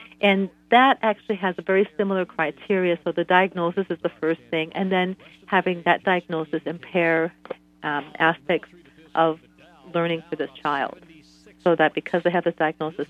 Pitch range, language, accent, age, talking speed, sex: 155-185 Hz, English, American, 40-59, 160 wpm, female